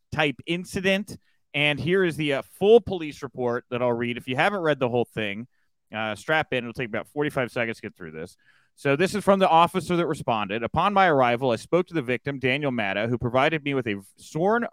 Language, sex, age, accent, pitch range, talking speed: English, male, 30-49, American, 130-180 Hz, 230 wpm